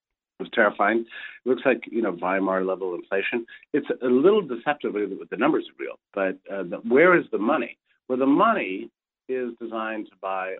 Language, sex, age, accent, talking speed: English, male, 50-69, American, 190 wpm